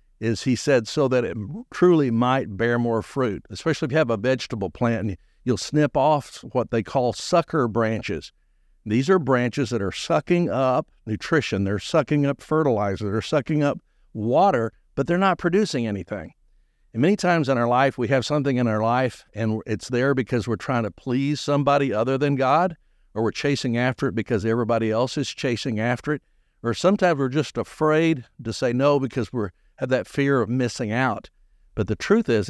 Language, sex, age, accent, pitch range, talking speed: English, male, 60-79, American, 115-145 Hz, 190 wpm